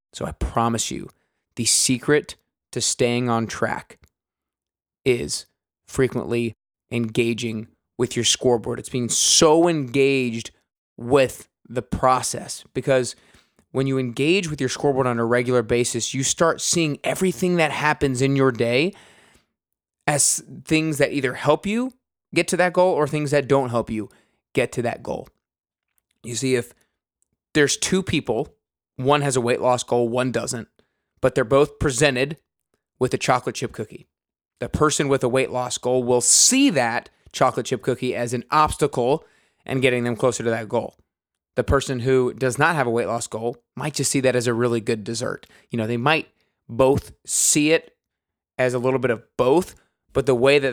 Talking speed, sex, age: 170 wpm, male, 20-39